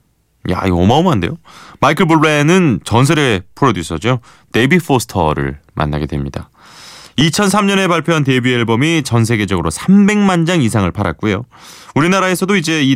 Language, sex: Korean, male